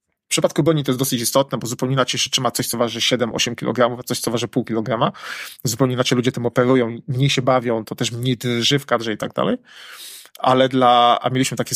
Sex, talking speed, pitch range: male, 235 wpm, 120-140 Hz